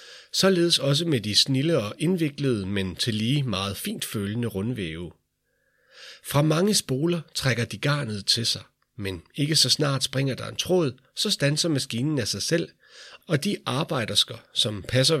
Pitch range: 110-155 Hz